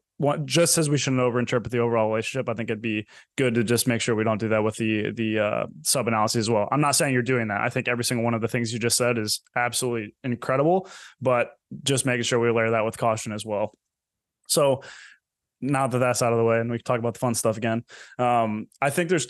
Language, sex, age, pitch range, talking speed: English, male, 20-39, 115-130 Hz, 250 wpm